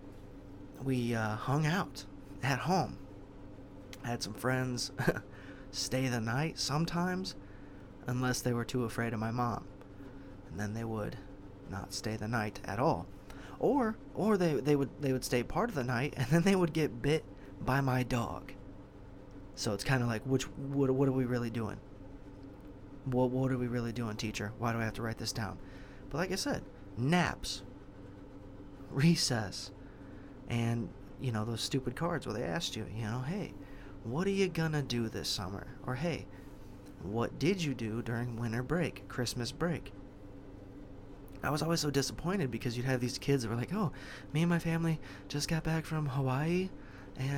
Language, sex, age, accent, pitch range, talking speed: English, male, 30-49, American, 100-145 Hz, 180 wpm